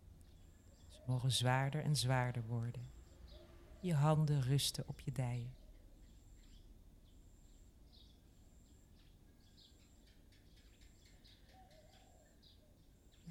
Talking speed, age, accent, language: 55 wpm, 40-59, Dutch, Dutch